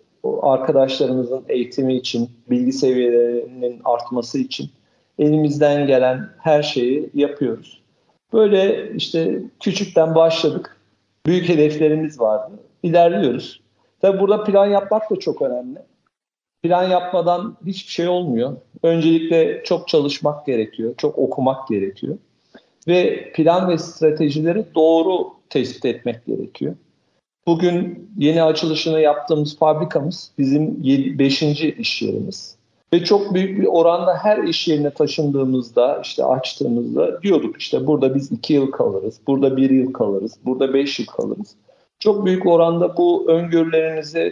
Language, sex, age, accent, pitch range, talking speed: Turkish, male, 50-69, native, 135-175 Hz, 120 wpm